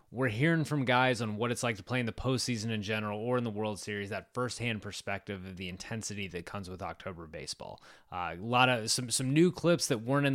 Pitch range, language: 105-125 Hz, English